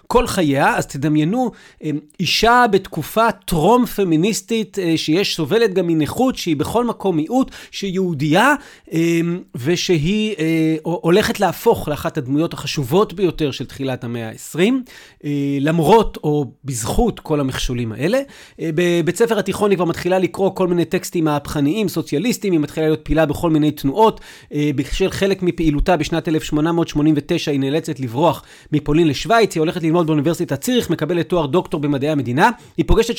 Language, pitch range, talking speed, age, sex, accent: Hebrew, 150-195 Hz, 135 wpm, 40-59, male, native